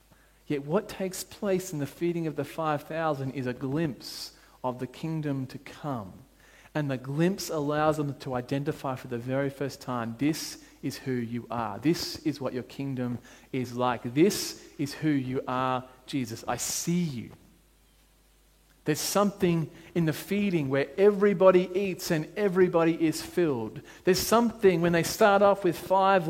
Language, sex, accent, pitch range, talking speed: English, male, Australian, 140-190 Hz, 160 wpm